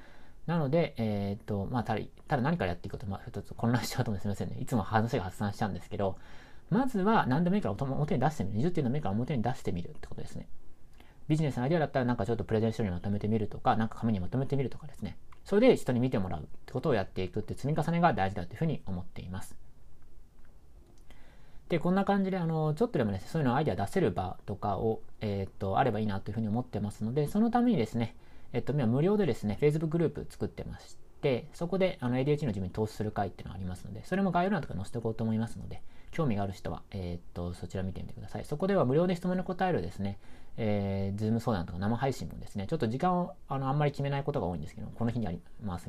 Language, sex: Japanese, male